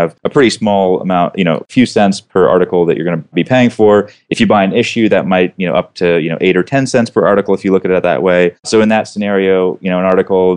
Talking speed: 295 wpm